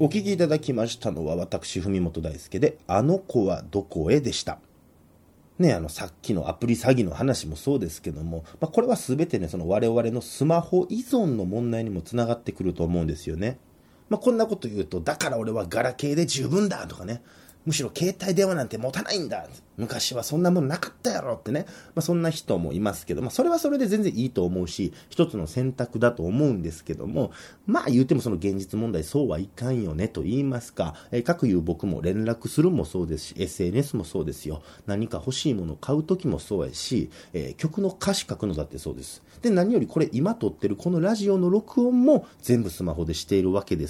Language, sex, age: Japanese, male, 30-49